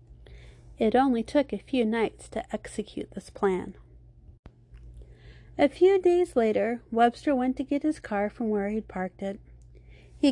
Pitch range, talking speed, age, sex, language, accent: 195-250 Hz, 150 wpm, 30-49, female, English, American